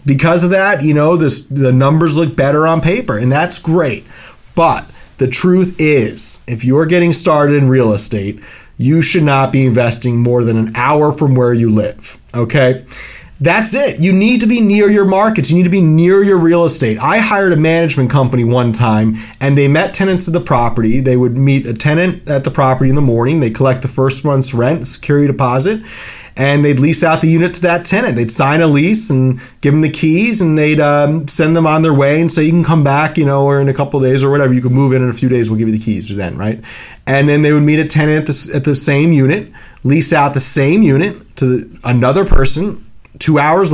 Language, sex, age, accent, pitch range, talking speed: English, male, 30-49, American, 130-165 Hz, 235 wpm